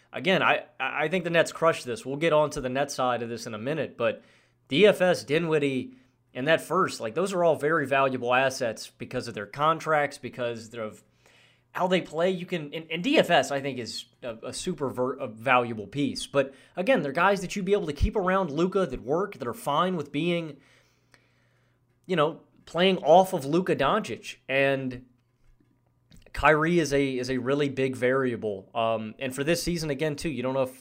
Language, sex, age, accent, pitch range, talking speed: English, male, 30-49, American, 125-160 Hz, 200 wpm